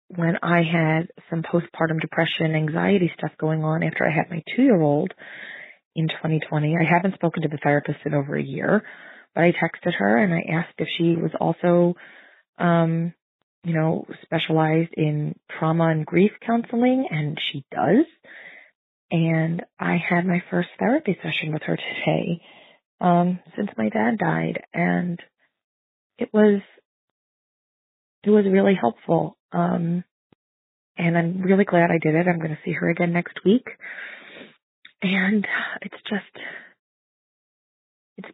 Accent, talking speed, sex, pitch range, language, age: American, 145 wpm, female, 155-195 Hz, English, 30-49